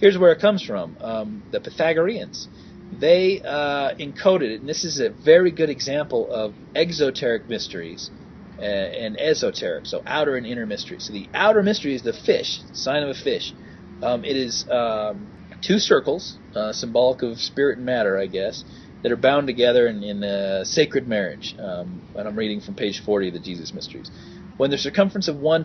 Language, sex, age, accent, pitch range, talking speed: English, male, 40-59, American, 110-160 Hz, 185 wpm